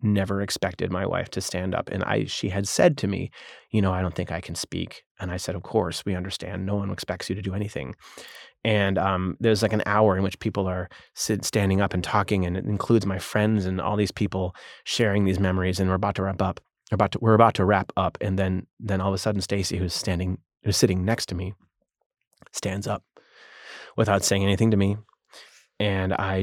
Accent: American